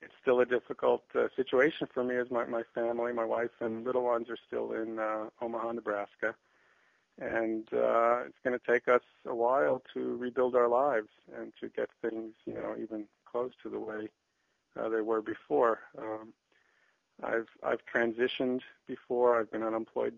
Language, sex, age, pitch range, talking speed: English, male, 40-59, 110-120 Hz, 175 wpm